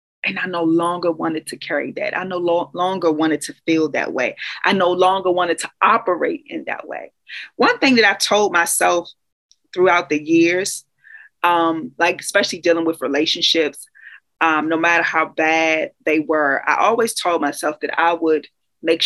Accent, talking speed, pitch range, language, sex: American, 175 wpm, 165-210 Hz, English, female